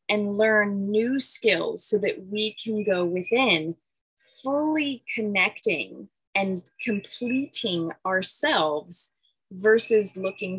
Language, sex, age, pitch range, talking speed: English, female, 30-49, 195-260 Hz, 95 wpm